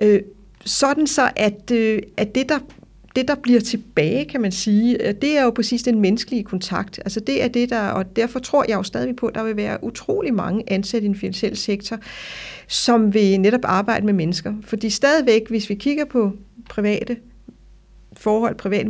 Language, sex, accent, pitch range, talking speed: Danish, female, native, 190-235 Hz, 185 wpm